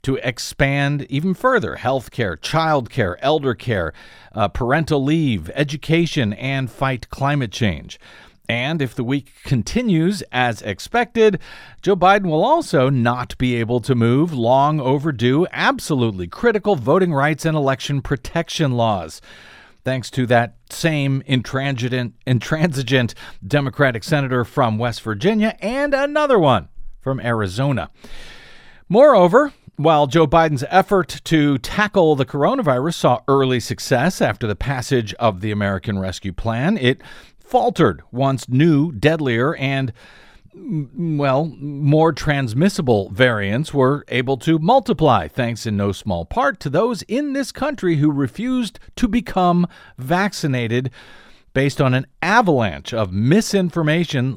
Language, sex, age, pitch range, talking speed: English, male, 40-59, 120-165 Hz, 125 wpm